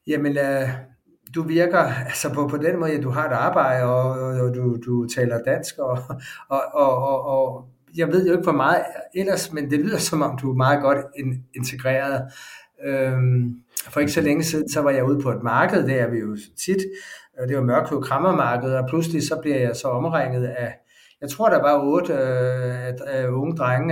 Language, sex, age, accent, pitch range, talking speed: Danish, male, 60-79, native, 130-165 Hz, 210 wpm